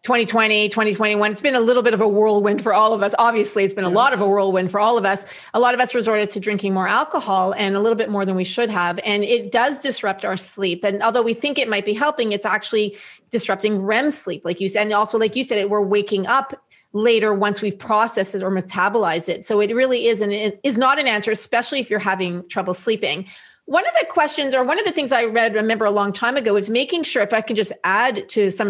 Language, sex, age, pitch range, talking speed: English, female, 30-49, 205-245 Hz, 255 wpm